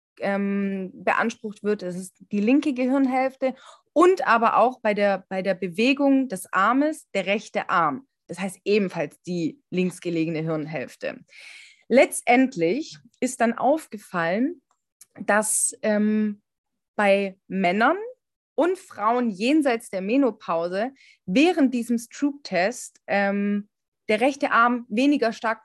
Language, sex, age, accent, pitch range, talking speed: German, female, 30-49, German, 195-280 Hz, 110 wpm